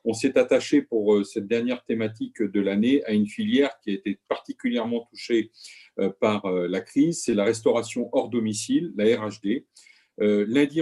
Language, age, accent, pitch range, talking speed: French, 40-59, French, 105-150 Hz, 155 wpm